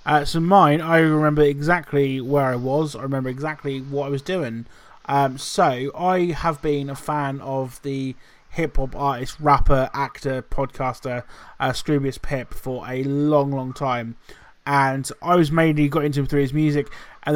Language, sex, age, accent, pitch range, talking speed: English, male, 20-39, British, 135-160 Hz, 170 wpm